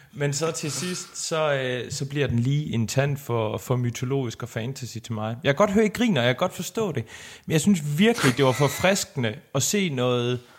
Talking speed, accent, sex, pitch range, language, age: 225 wpm, native, male, 125-160 Hz, Danish, 30-49